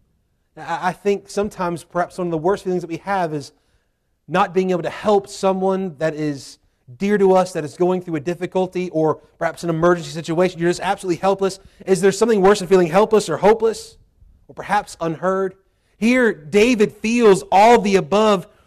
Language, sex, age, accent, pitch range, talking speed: English, male, 30-49, American, 155-195 Hz, 185 wpm